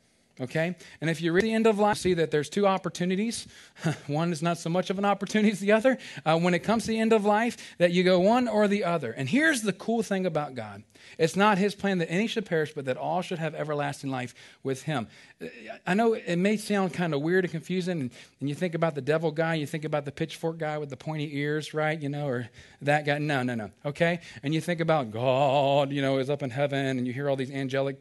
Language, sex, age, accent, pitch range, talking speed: English, male, 40-59, American, 135-195 Hz, 255 wpm